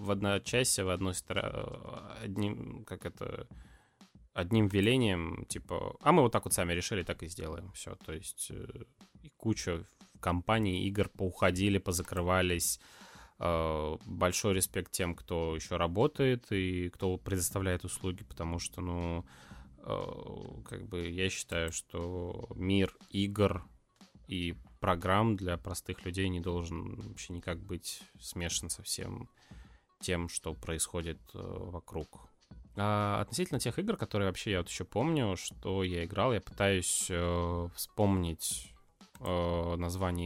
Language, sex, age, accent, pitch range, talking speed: Russian, male, 20-39, native, 85-100 Hz, 130 wpm